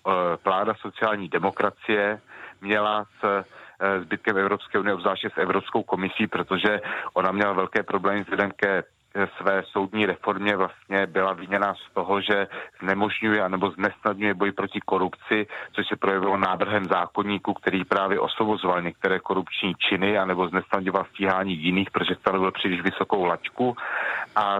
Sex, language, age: male, Czech, 40-59